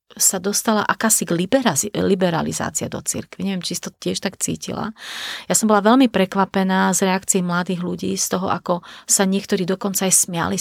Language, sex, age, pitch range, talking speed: Slovak, female, 30-49, 185-220 Hz, 175 wpm